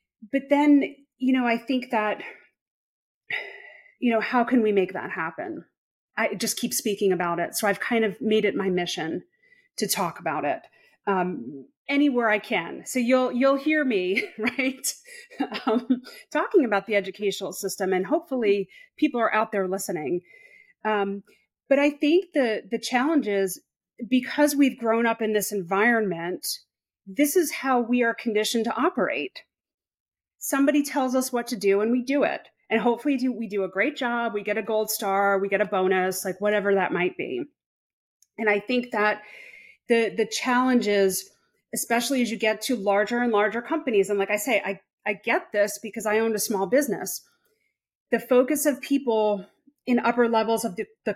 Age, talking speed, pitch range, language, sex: 30-49, 175 wpm, 210-280 Hz, English, female